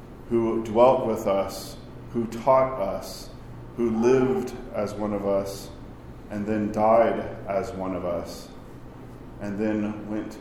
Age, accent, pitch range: 40-59, American, 100-115 Hz